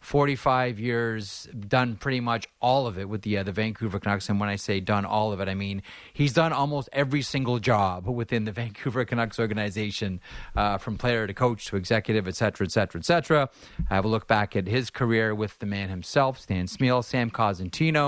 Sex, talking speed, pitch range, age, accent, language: male, 210 wpm, 100-125 Hz, 30-49, American, English